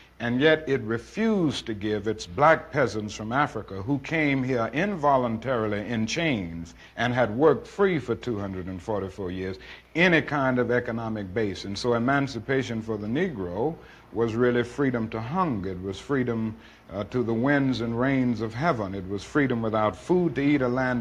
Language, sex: English, male